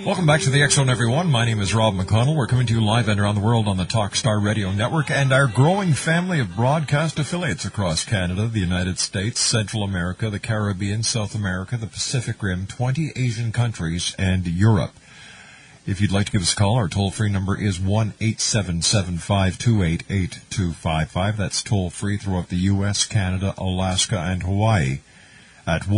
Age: 50-69